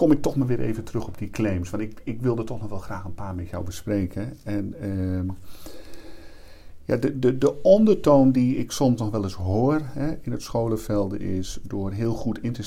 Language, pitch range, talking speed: Dutch, 95-120 Hz, 210 wpm